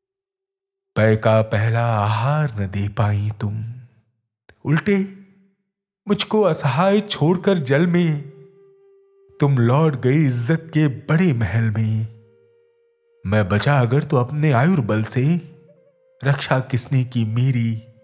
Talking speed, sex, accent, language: 105 wpm, male, native, Hindi